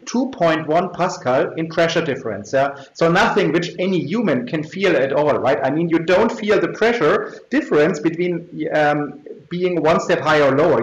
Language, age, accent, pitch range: English, 40-59, German, 150-195 Hz